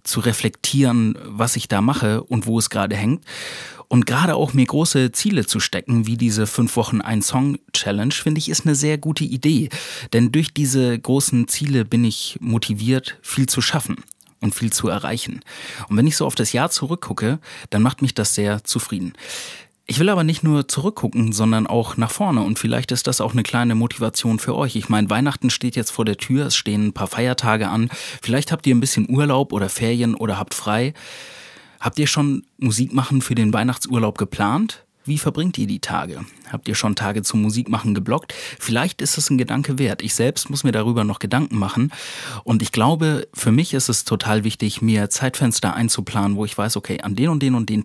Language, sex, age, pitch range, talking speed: German, male, 30-49, 110-135 Hz, 205 wpm